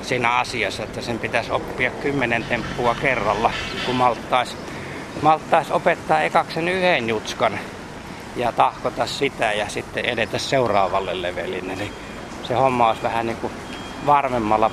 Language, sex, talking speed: Finnish, male, 120 wpm